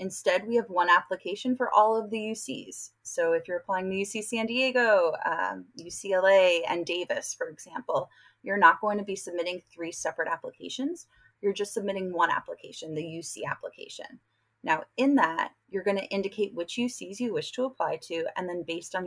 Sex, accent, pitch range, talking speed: female, American, 180-235 Hz, 185 wpm